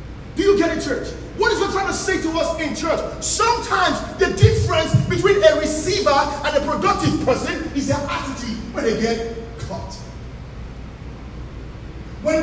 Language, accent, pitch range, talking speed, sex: English, Nigerian, 310-370 Hz, 160 wpm, male